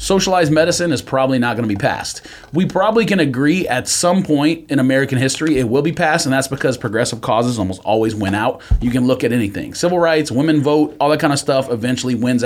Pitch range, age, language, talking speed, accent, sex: 110-160 Hz, 30-49, English, 230 wpm, American, male